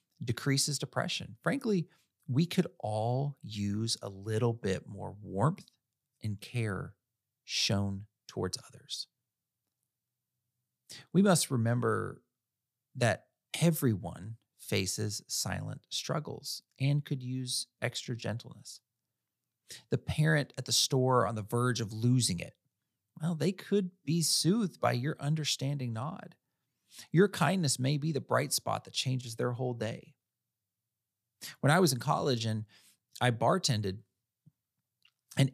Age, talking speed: 40-59, 120 wpm